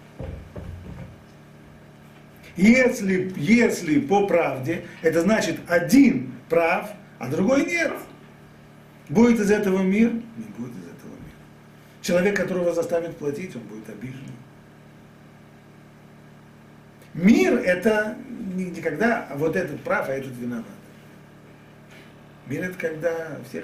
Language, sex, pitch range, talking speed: Russian, male, 125-205 Hz, 100 wpm